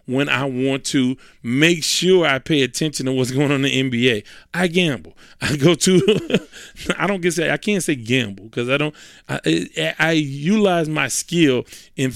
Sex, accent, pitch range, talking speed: male, American, 135-185 Hz, 195 wpm